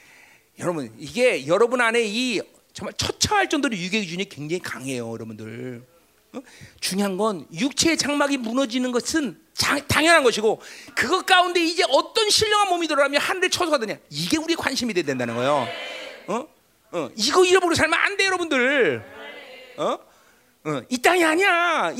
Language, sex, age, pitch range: Korean, male, 40-59, 275-385 Hz